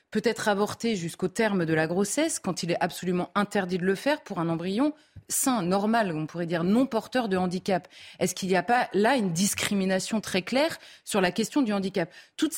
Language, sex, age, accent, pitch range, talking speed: French, female, 20-39, French, 185-240 Hz, 210 wpm